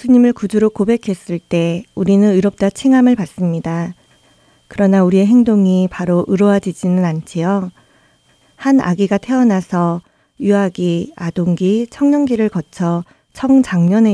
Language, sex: Korean, female